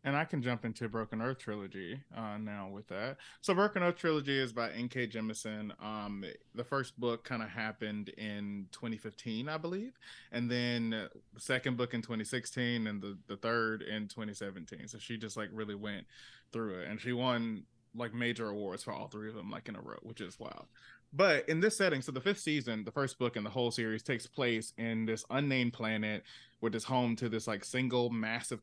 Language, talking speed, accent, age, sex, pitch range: English, 205 wpm, American, 20-39, male, 110-125 Hz